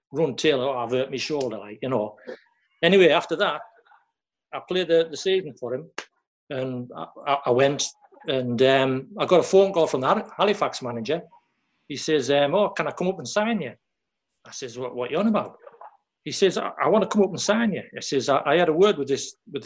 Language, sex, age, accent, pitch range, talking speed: English, male, 60-79, British, 135-185 Hz, 225 wpm